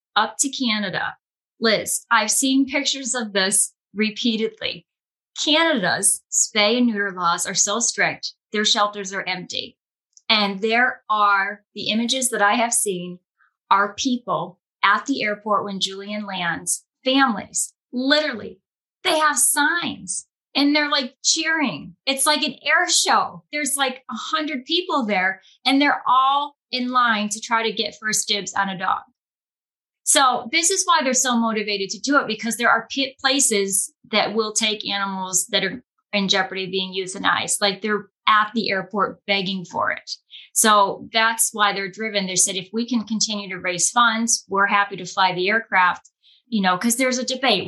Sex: female